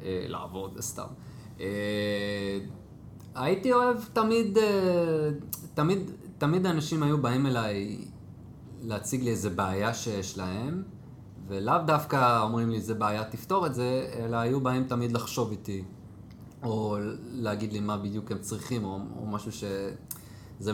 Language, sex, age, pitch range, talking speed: Hebrew, male, 20-39, 100-145 Hz, 135 wpm